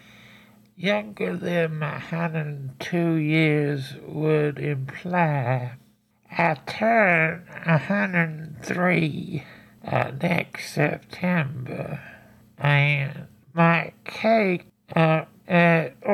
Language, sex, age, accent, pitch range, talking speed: English, male, 60-79, American, 150-185 Hz, 80 wpm